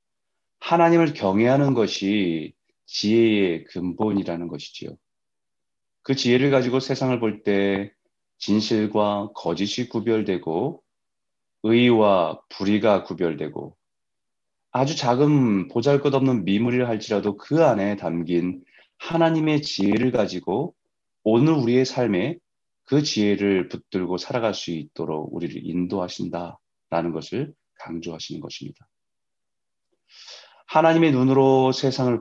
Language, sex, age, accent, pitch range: Korean, male, 30-49, native, 95-130 Hz